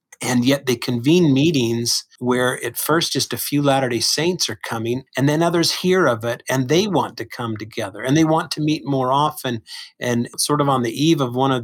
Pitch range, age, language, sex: 120-155 Hz, 50-69, English, male